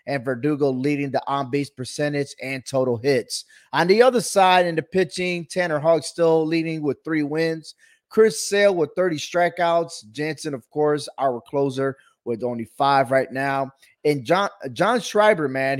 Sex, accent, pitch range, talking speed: male, American, 145-195 Hz, 165 wpm